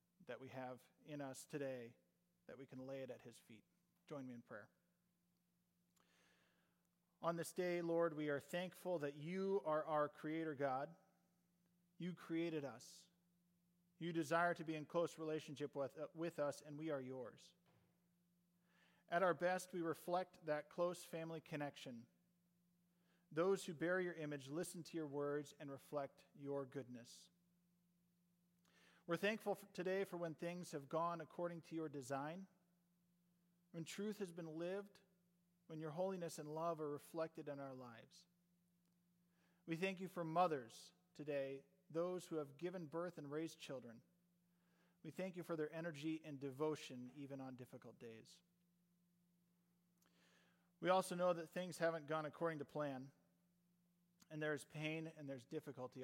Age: 40-59